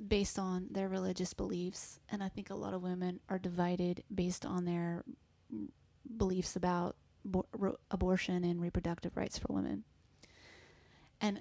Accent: American